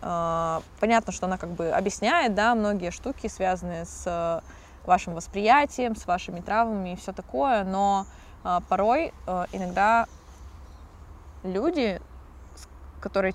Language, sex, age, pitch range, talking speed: Russian, female, 20-39, 155-195 Hz, 110 wpm